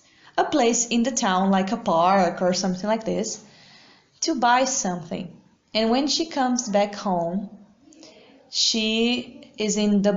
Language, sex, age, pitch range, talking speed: English, female, 20-39, 195-245 Hz, 150 wpm